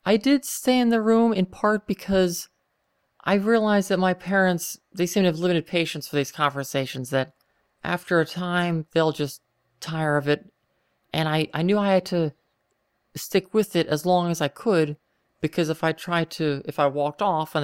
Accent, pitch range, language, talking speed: American, 150-190 Hz, English, 195 wpm